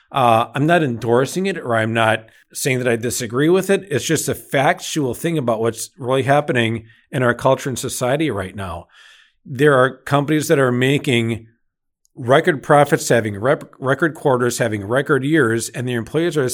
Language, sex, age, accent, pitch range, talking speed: English, male, 50-69, American, 115-150 Hz, 175 wpm